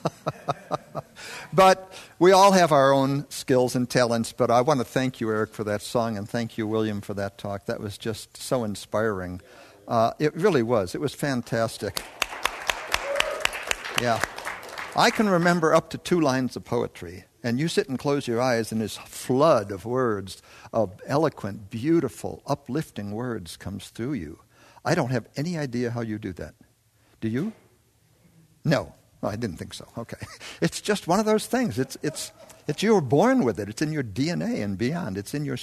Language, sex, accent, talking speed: English, male, American, 185 wpm